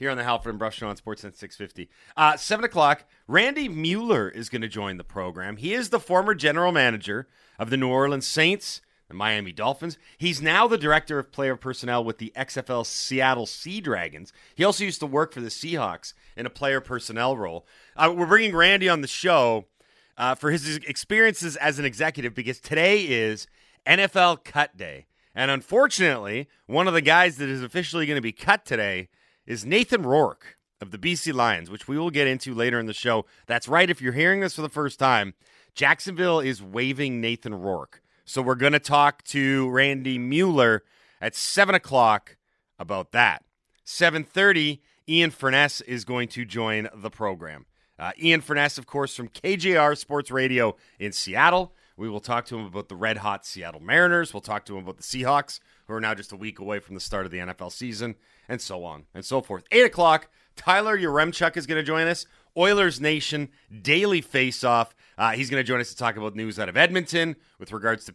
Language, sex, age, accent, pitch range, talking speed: English, male, 30-49, American, 110-160 Hz, 200 wpm